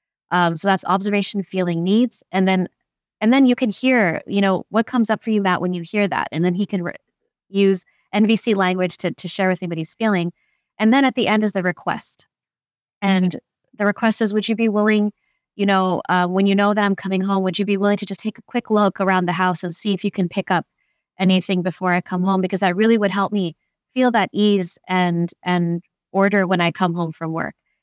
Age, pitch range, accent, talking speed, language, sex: 20-39, 180-210 Hz, American, 235 wpm, English, female